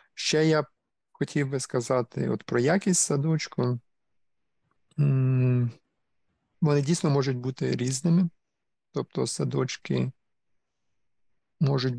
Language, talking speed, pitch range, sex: Ukrainian, 85 wpm, 125-145 Hz, male